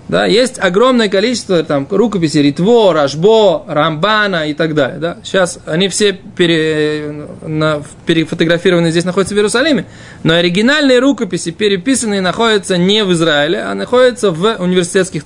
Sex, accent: male, native